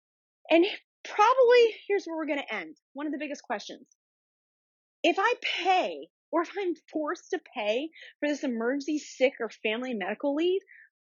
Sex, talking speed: female, 165 wpm